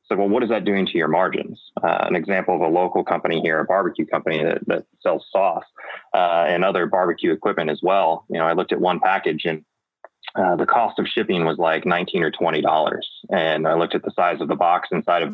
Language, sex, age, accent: English, male, 20-39, American